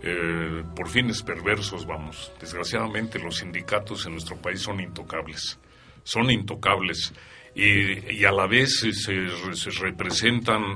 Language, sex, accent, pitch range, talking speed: Spanish, male, Mexican, 95-115 Hz, 130 wpm